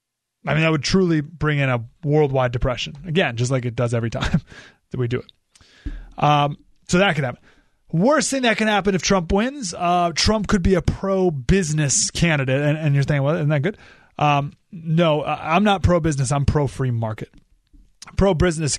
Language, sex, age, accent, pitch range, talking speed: English, male, 30-49, American, 130-175 Hz, 185 wpm